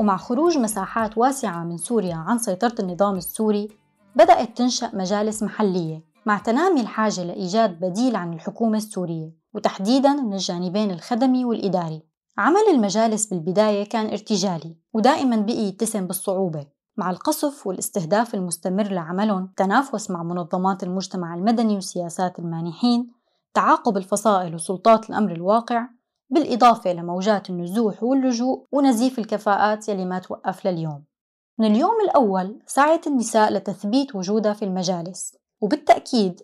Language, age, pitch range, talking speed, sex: Arabic, 20-39, 185-240 Hz, 120 wpm, female